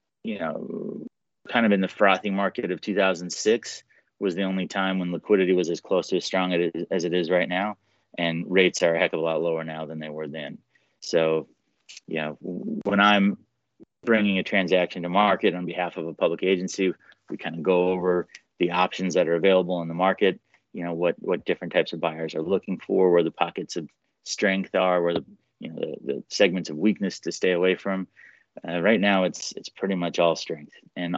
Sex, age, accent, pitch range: male, 30-49, American, 85-95 Hz